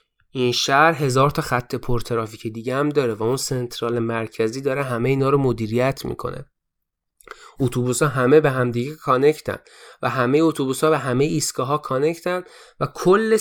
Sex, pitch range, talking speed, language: male, 125-165 Hz, 155 wpm, Persian